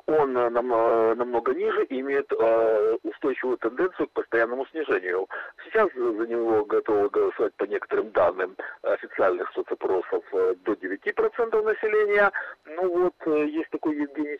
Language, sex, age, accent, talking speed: Russian, male, 50-69, native, 115 wpm